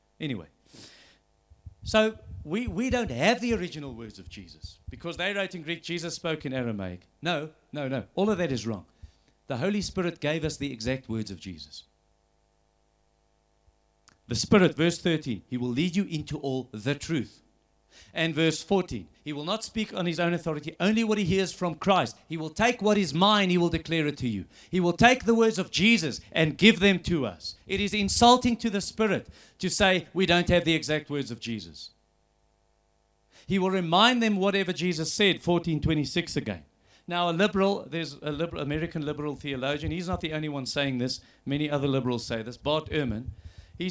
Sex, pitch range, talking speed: male, 125-200 Hz, 190 wpm